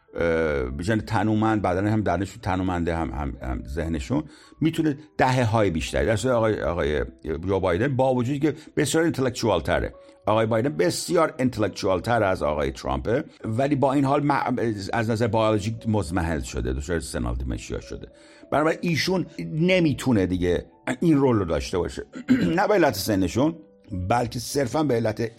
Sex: male